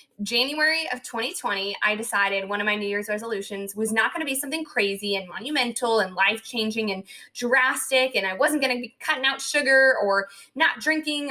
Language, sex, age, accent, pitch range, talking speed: English, female, 20-39, American, 205-260 Hz, 190 wpm